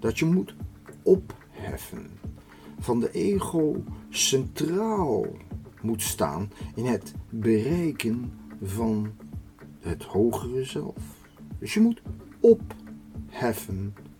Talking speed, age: 90 wpm, 50-69